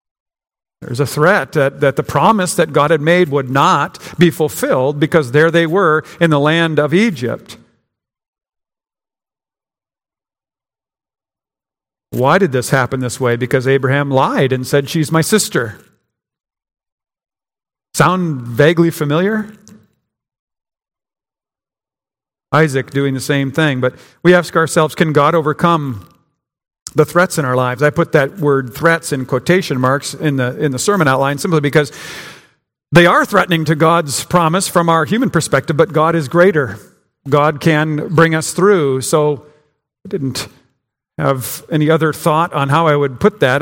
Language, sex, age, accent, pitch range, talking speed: English, male, 50-69, American, 135-165 Hz, 145 wpm